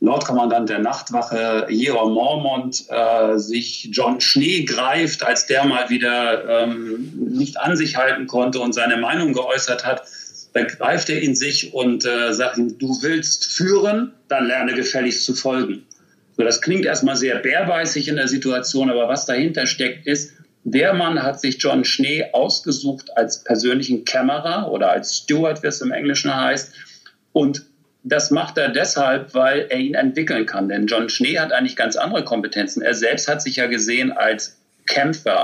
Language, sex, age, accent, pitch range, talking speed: German, male, 40-59, German, 120-145 Hz, 170 wpm